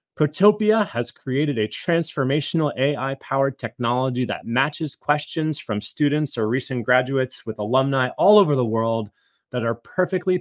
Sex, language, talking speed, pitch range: male, English, 140 wpm, 115-150 Hz